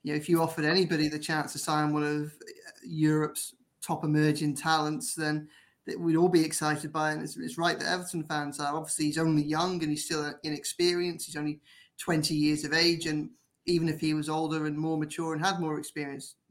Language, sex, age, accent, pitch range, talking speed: English, male, 20-39, British, 150-165 Hz, 205 wpm